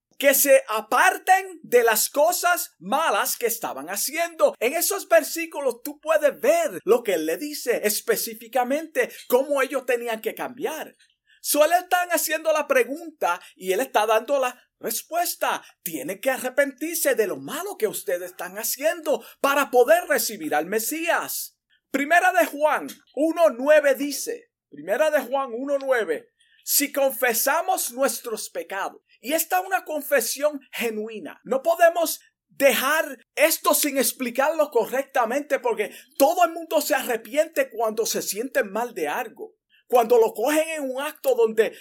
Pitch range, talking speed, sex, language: 250-330 Hz, 140 wpm, male, Spanish